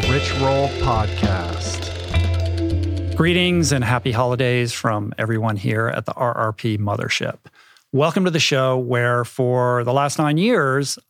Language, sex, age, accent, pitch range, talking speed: English, male, 50-69, American, 115-140 Hz, 130 wpm